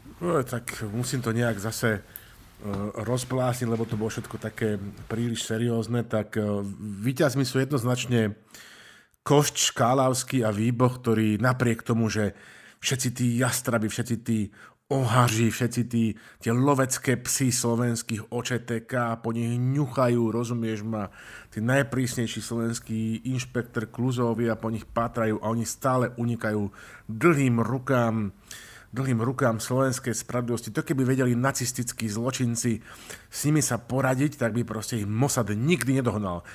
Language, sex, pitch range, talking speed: Slovak, male, 110-125 Hz, 130 wpm